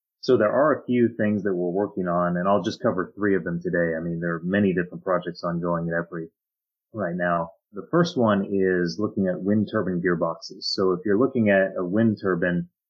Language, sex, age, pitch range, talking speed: English, male, 30-49, 85-105 Hz, 220 wpm